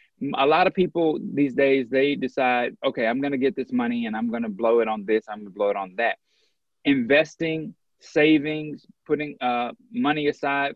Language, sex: English, male